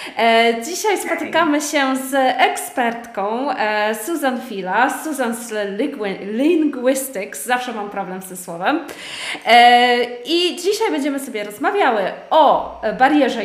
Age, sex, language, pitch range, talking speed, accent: 20-39, female, Polish, 205-265 Hz, 105 wpm, native